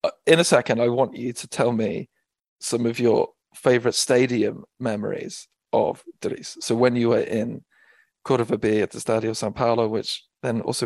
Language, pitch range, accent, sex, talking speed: English, 115-135 Hz, British, male, 175 wpm